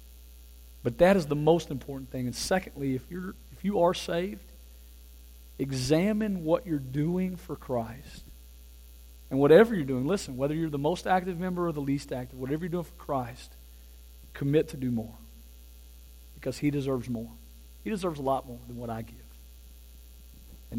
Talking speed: 170 wpm